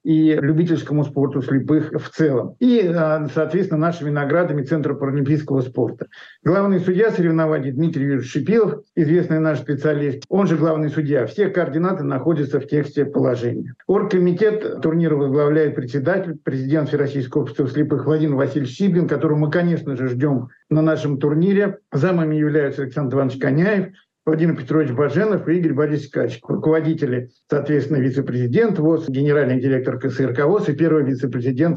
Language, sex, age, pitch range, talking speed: Russian, male, 60-79, 140-165 Hz, 140 wpm